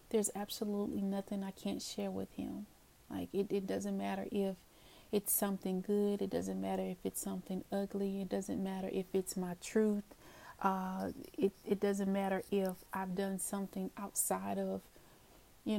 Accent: American